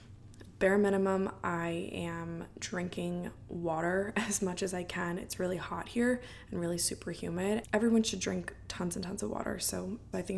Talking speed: 175 wpm